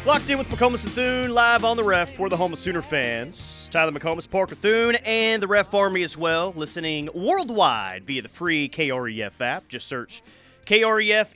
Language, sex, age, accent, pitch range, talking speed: English, male, 30-49, American, 140-190 Hz, 190 wpm